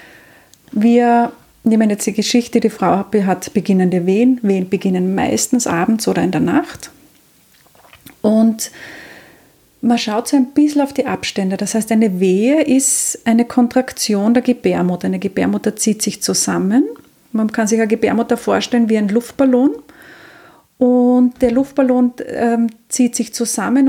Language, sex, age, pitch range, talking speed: German, female, 30-49, 200-245 Hz, 145 wpm